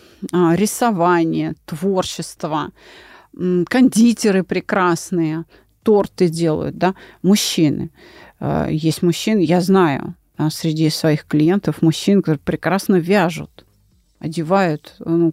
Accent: native